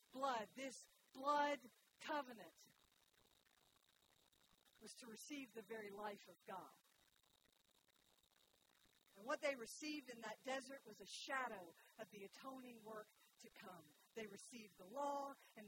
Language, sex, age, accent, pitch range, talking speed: English, female, 50-69, American, 215-270 Hz, 125 wpm